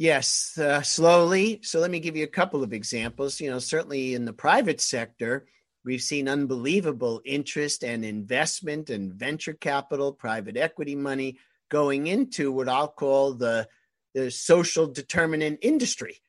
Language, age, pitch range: English, 50-69, 120-160 Hz